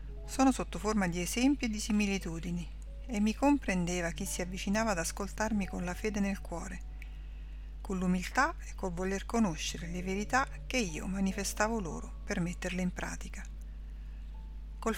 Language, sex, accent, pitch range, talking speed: Italian, female, native, 175-215 Hz, 150 wpm